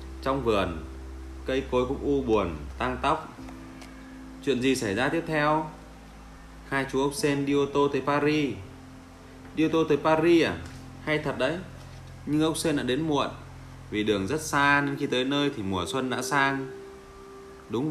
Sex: male